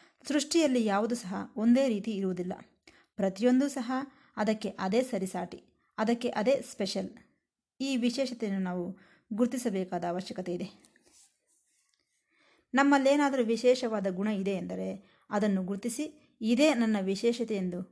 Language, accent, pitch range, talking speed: Kannada, native, 195-250 Hz, 105 wpm